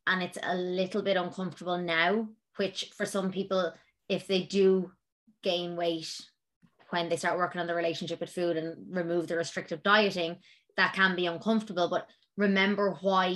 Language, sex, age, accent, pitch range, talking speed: English, female, 20-39, Irish, 175-200 Hz, 165 wpm